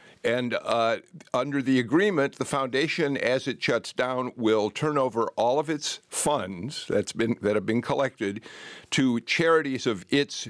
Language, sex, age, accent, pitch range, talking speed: English, male, 50-69, American, 110-135 Hz, 165 wpm